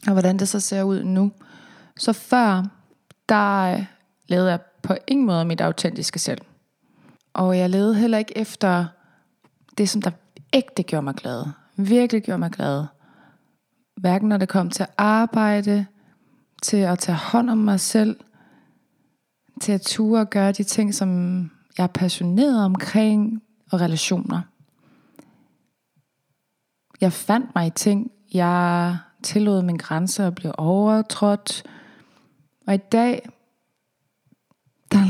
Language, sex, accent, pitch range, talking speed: English, female, Danish, 185-225 Hz, 135 wpm